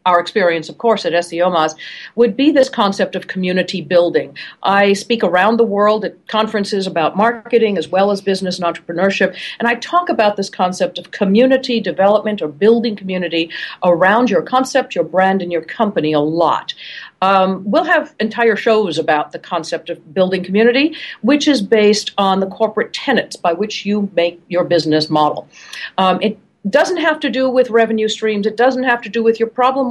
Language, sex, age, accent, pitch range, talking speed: English, female, 50-69, American, 175-230 Hz, 185 wpm